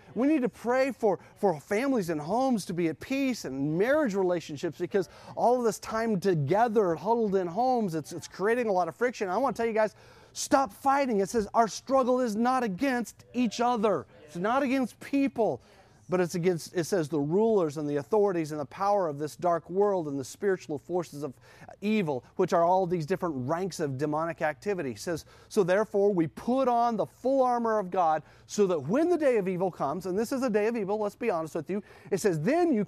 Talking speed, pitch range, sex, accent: 220 wpm, 150-215 Hz, male, American